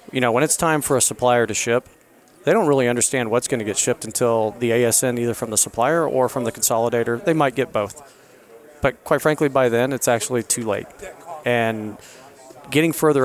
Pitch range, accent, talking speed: 115-135 Hz, American, 210 wpm